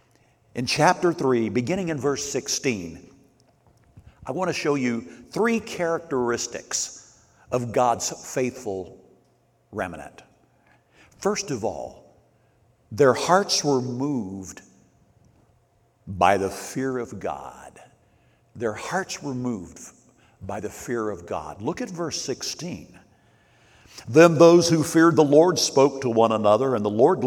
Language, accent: English, American